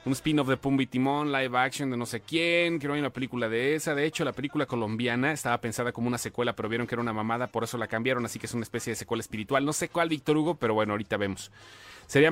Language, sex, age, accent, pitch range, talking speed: Spanish, male, 30-49, Mexican, 115-145 Hz, 280 wpm